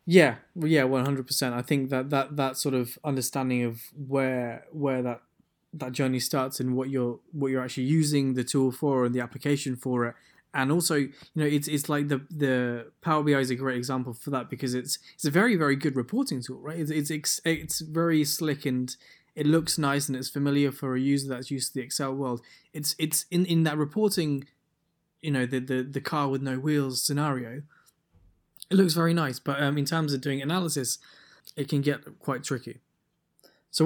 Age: 20-39